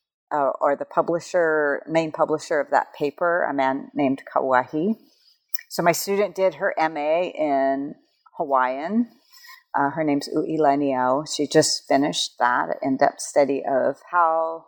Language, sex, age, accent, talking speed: English, female, 50-69, American, 135 wpm